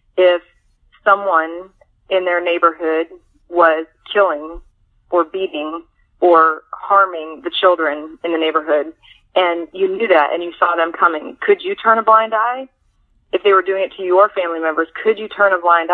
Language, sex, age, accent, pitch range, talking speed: English, female, 30-49, American, 165-190 Hz, 170 wpm